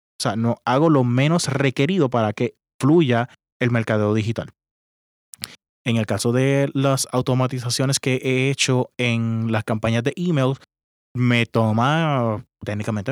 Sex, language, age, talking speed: male, Spanish, 20-39, 135 wpm